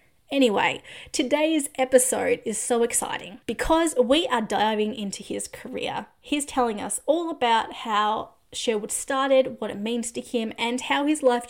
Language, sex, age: English, female, 20-39